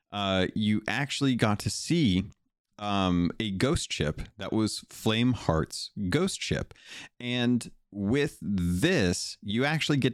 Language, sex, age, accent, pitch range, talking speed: English, male, 30-49, American, 90-120 Hz, 130 wpm